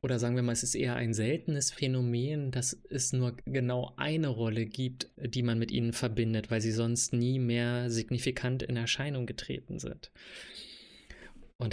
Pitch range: 120-140 Hz